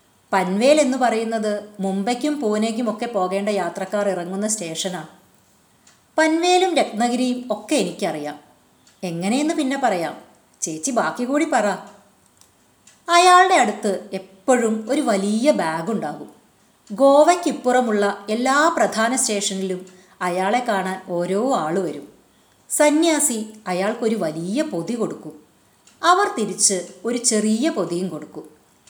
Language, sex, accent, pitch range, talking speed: Malayalam, female, native, 185-255 Hz, 95 wpm